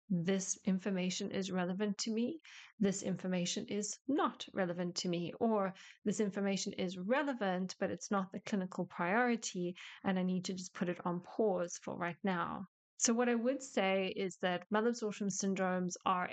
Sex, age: female, 30-49